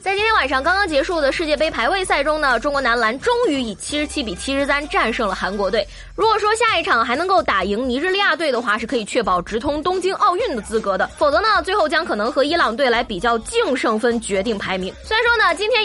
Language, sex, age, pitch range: Chinese, female, 20-39, 255-390 Hz